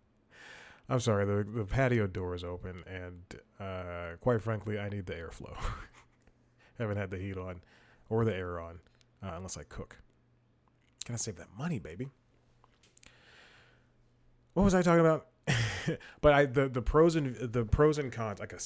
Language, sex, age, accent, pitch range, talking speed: English, male, 30-49, American, 100-130 Hz, 170 wpm